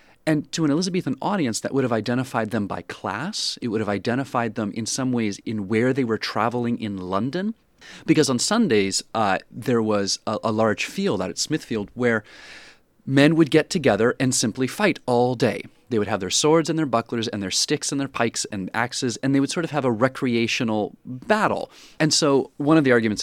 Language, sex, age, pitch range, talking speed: English, male, 30-49, 110-140 Hz, 210 wpm